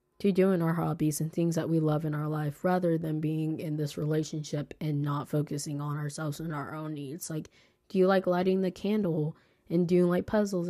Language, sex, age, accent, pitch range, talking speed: English, female, 20-39, American, 155-190 Hz, 215 wpm